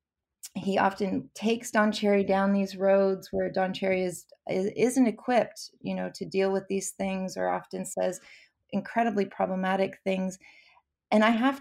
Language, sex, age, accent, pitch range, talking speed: English, female, 30-49, American, 185-210 Hz, 160 wpm